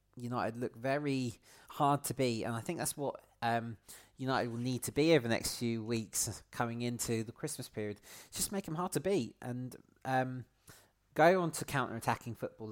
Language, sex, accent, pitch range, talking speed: English, male, British, 110-135 Hz, 190 wpm